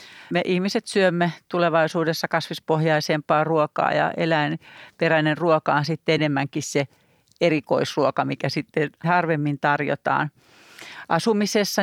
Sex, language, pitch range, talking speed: female, Finnish, 150-170 Hz, 95 wpm